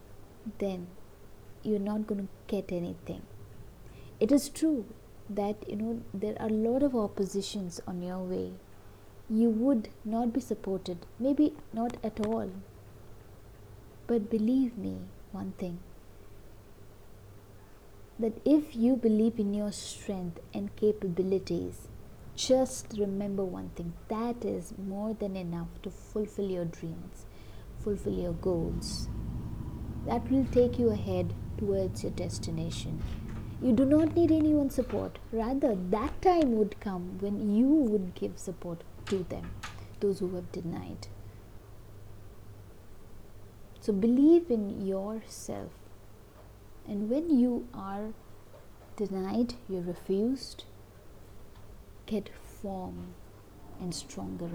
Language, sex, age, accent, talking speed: English, female, 20-39, Indian, 115 wpm